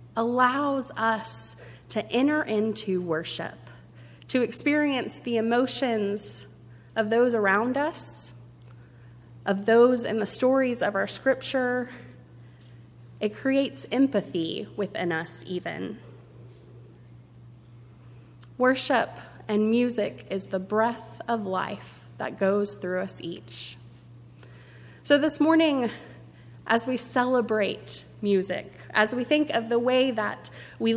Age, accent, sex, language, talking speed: 20-39, American, female, English, 110 wpm